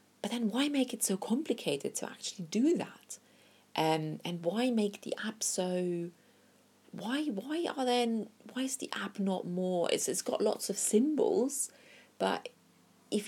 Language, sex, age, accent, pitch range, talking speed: English, female, 30-49, British, 155-225 Hz, 160 wpm